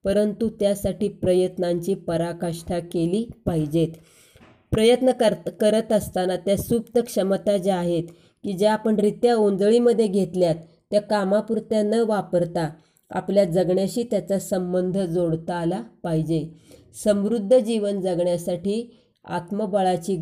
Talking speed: 105 wpm